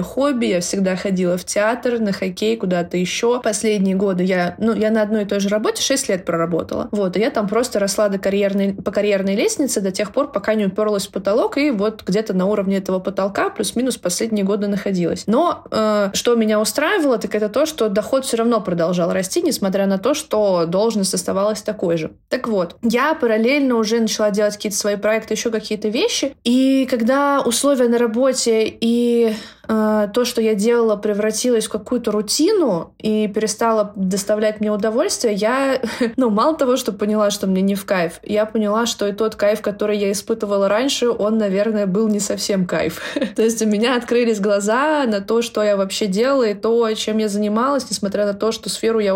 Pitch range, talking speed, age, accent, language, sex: 195-230 Hz, 195 wpm, 20-39, native, Russian, female